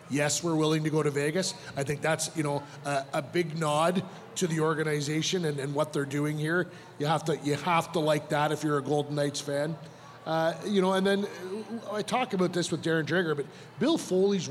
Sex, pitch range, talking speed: male, 145-165 Hz, 225 wpm